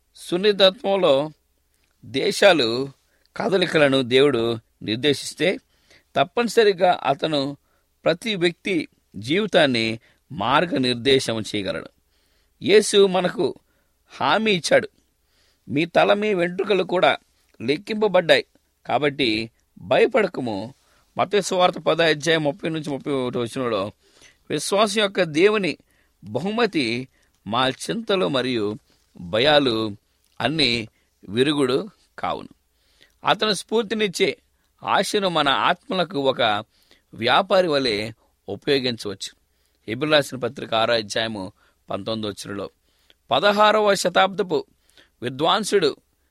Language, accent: English, Indian